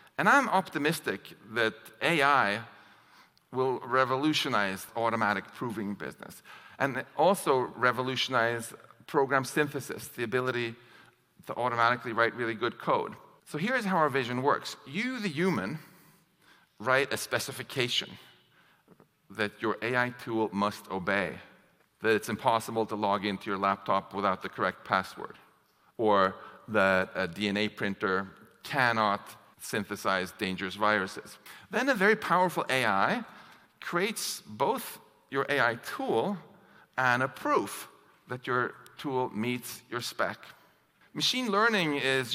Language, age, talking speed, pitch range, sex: English, 50-69, 120 wpm, 110-150 Hz, male